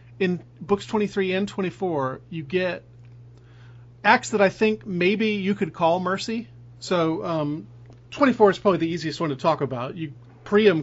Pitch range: 125-180 Hz